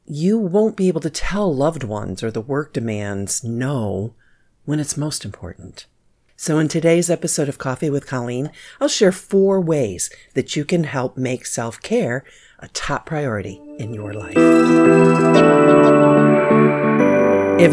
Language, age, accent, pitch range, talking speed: English, 50-69, American, 110-155 Hz, 140 wpm